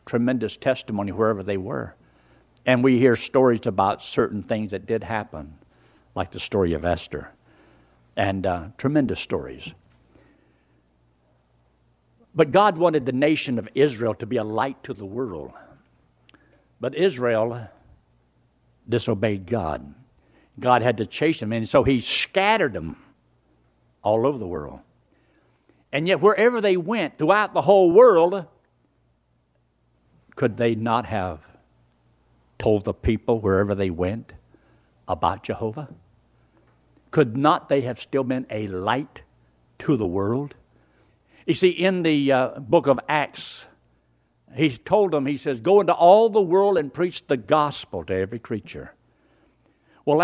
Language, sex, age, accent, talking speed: English, male, 60-79, American, 135 wpm